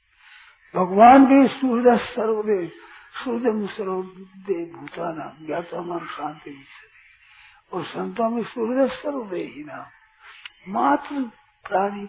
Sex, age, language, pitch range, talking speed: male, 60-79, Hindi, 185-245 Hz, 100 wpm